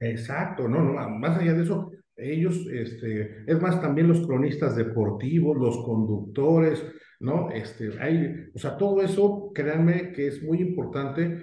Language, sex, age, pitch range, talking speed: Spanish, male, 50-69, 120-160 Hz, 150 wpm